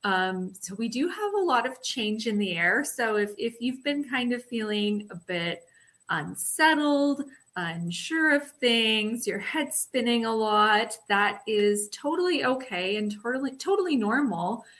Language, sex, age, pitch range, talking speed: English, female, 20-39, 200-265 Hz, 160 wpm